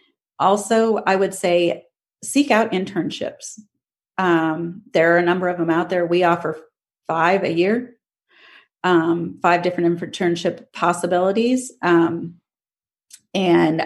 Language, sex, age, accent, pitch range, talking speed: English, female, 40-59, American, 170-195 Hz, 120 wpm